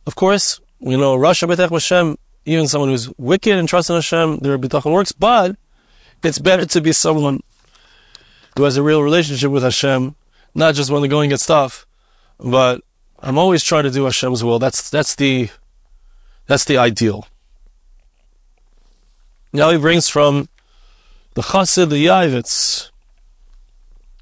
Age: 30-49